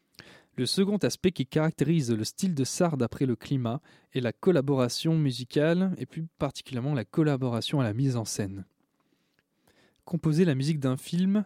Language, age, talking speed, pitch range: French, 20-39, 160 wpm, 120-150 Hz